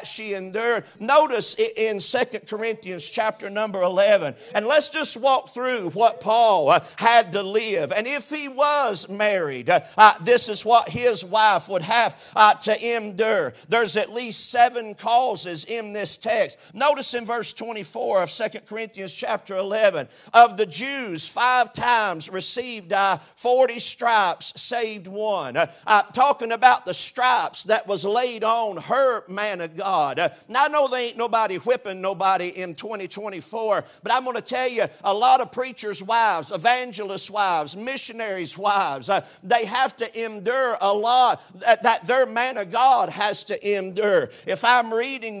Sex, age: male, 50-69